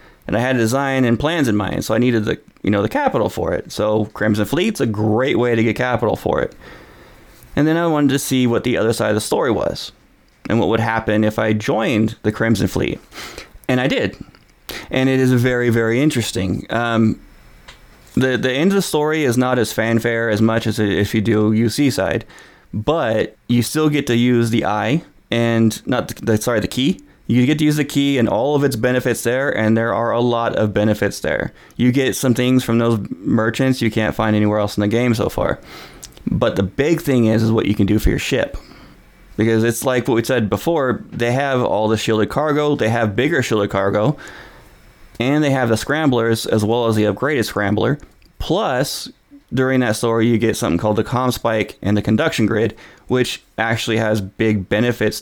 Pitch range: 110-125 Hz